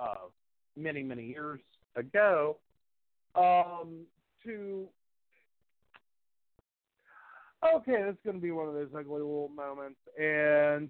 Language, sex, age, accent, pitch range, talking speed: English, male, 40-59, American, 135-190 Hz, 100 wpm